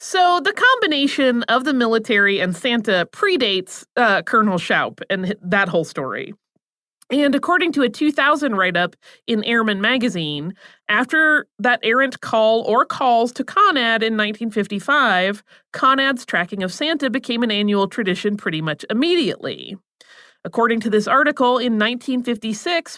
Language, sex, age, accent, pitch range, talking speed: English, female, 30-49, American, 200-270 Hz, 135 wpm